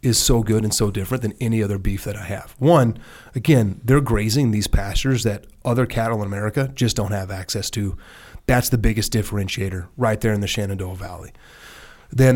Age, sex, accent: 30-49, male, American